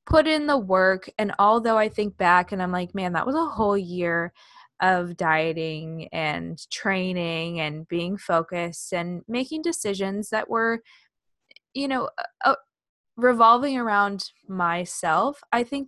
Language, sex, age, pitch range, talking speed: English, female, 20-39, 180-225 Hz, 145 wpm